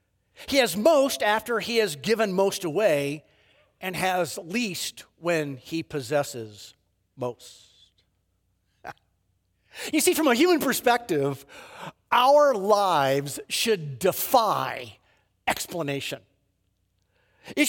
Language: English